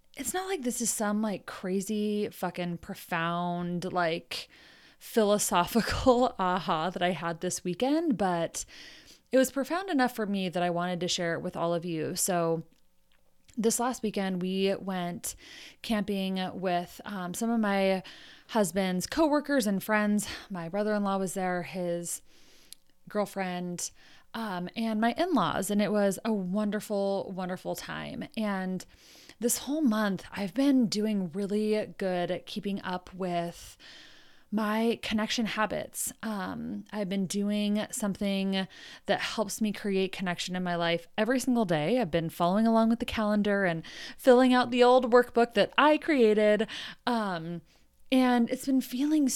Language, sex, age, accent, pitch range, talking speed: English, female, 20-39, American, 180-230 Hz, 145 wpm